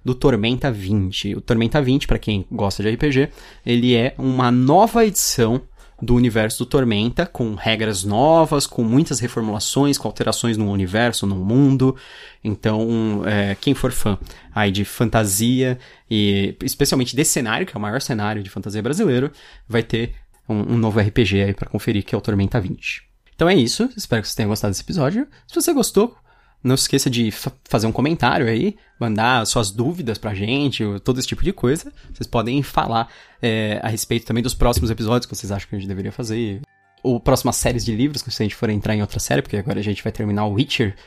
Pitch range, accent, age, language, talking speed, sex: 105-130 Hz, Brazilian, 20-39, Portuguese, 205 wpm, male